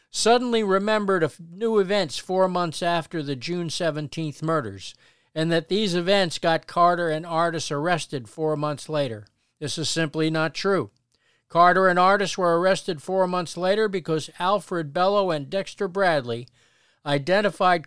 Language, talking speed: English, 150 wpm